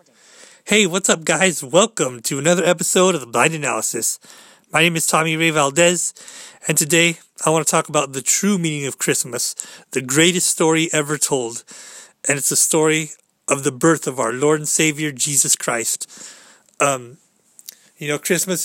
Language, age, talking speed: English, 30-49, 170 wpm